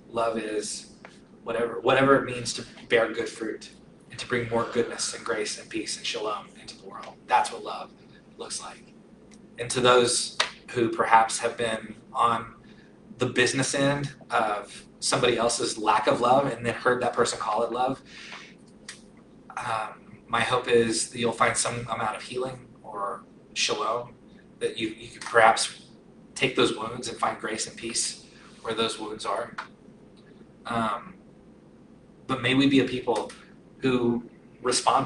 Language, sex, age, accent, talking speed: English, male, 20-39, American, 160 wpm